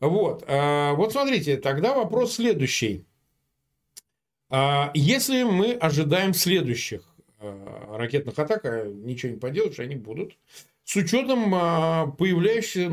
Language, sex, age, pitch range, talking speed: Russian, male, 40-59, 130-195 Hz, 95 wpm